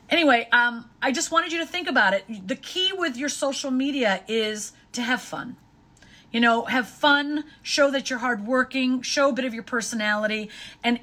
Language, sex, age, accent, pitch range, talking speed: English, female, 40-59, American, 215-275 Hz, 190 wpm